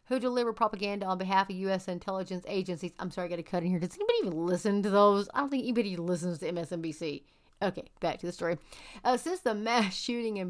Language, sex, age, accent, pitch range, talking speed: English, female, 40-59, American, 180-225 Hz, 235 wpm